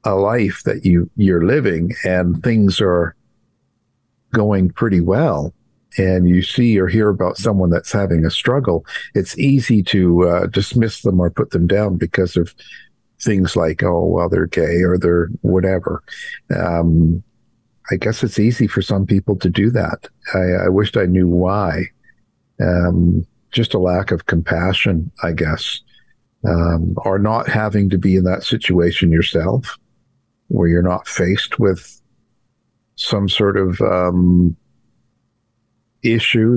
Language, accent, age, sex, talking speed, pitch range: English, American, 50-69, male, 145 wpm, 90-110 Hz